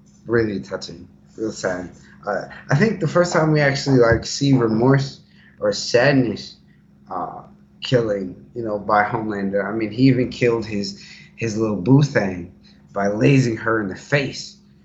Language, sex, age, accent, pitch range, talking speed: English, male, 20-39, American, 100-120 Hz, 155 wpm